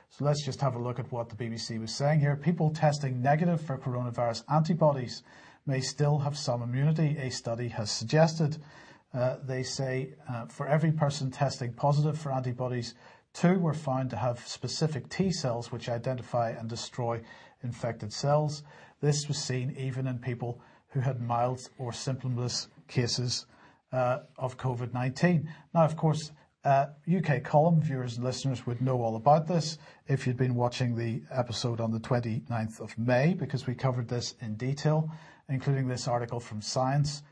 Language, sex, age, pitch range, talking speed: English, male, 40-59, 120-150 Hz, 165 wpm